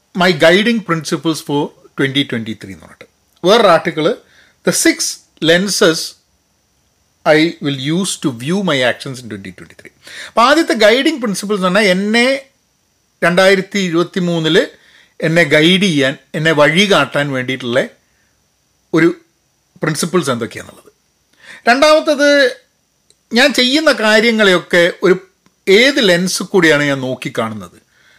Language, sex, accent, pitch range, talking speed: Malayalam, male, native, 140-210 Hz, 105 wpm